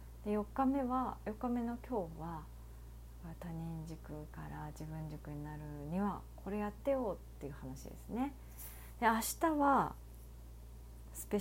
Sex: female